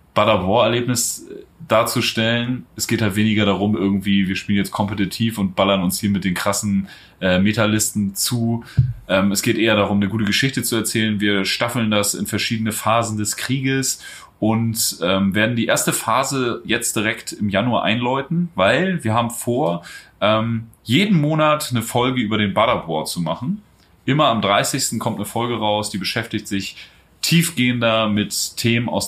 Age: 30-49